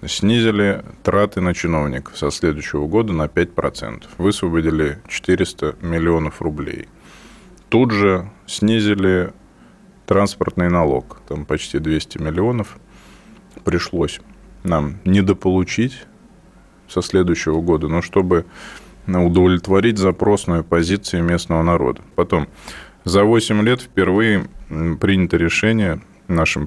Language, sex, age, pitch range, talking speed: Russian, male, 20-39, 85-105 Hz, 95 wpm